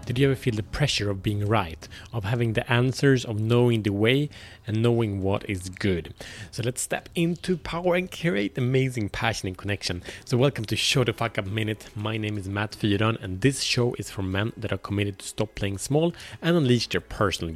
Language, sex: Swedish, male